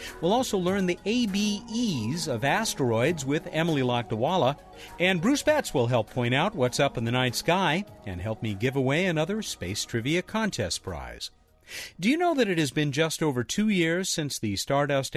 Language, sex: English, male